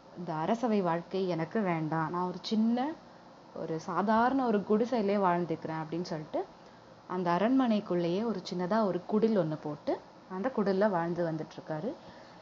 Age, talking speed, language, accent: 30-49, 125 wpm, Tamil, native